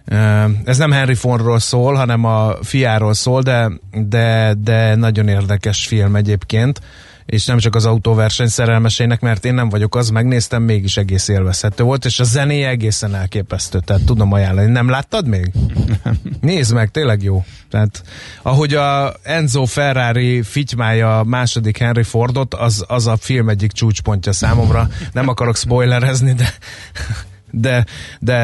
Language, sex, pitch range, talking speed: Hungarian, male, 110-130 Hz, 145 wpm